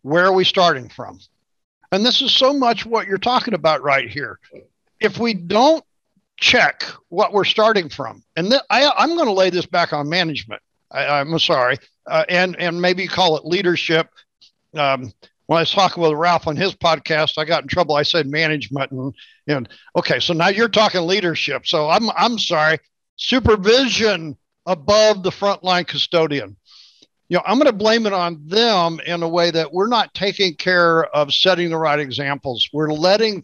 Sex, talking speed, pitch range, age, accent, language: male, 180 wpm, 155-205 Hz, 60-79, American, English